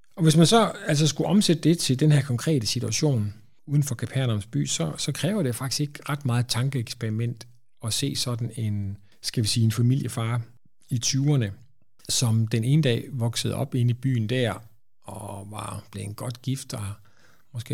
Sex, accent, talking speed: male, native, 185 wpm